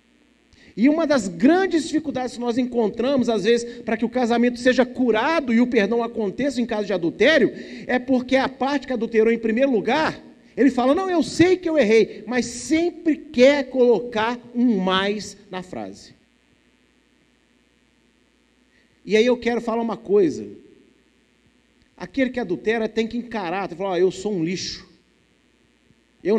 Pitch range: 215-290 Hz